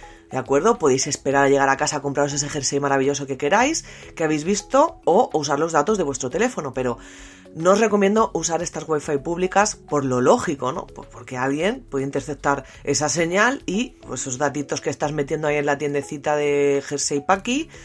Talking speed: 190 wpm